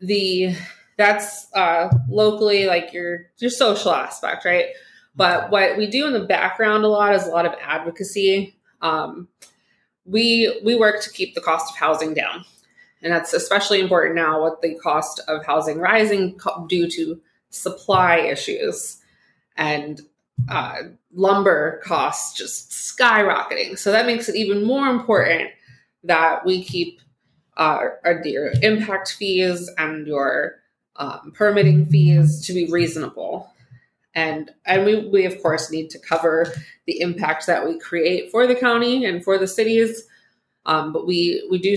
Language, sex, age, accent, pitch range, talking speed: English, female, 20-39, American, 160-200 Hz, 150 wpm